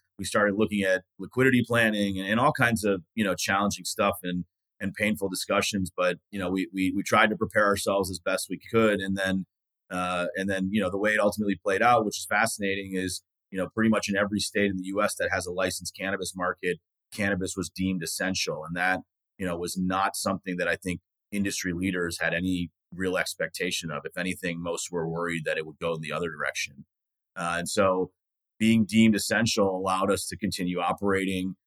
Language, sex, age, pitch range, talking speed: English, male, 30-49, 90-105 Hz, 210 wpm